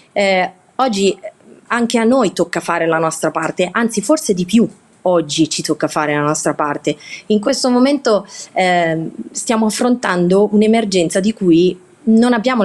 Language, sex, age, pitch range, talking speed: Italian, female, 30-49, 160-215 Hz, 150 wpm